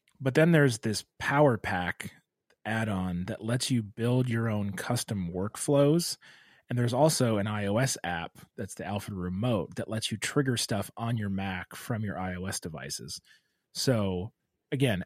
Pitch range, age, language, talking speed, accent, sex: 100-125 Hz, 30-49, English, 160 wpm, American, male